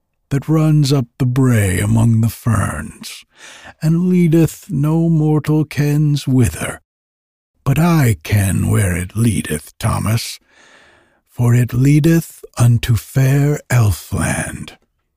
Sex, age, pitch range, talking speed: male, 60-79, 95-150 Hz, 105 wpm